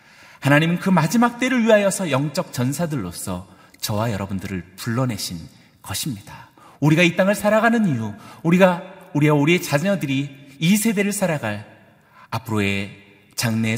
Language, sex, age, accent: Korean, male, 40-59, native